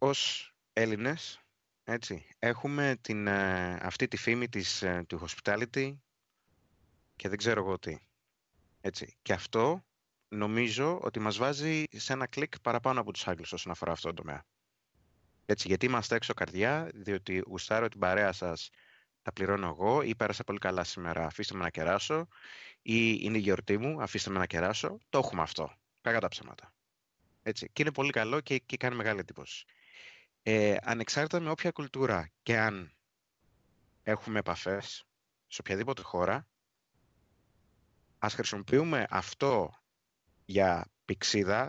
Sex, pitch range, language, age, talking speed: male, 95-130 Hz, Greek, 30-49, 140 wpm